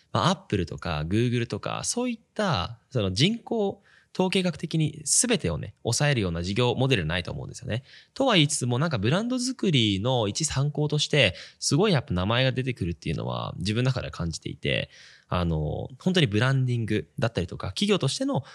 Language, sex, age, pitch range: Japanese, male, 20-39, 100-140 Hz